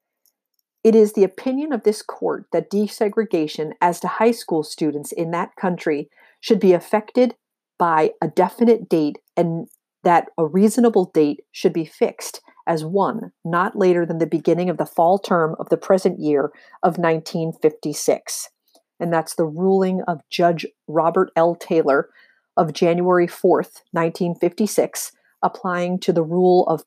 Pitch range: 160-190 Hz